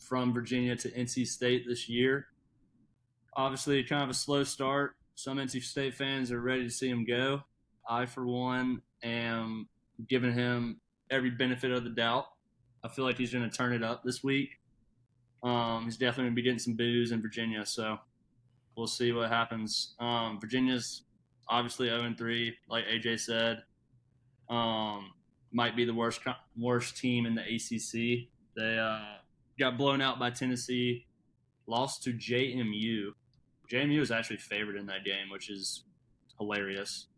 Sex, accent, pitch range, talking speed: male, American, 115-125 Hz, 160 wpm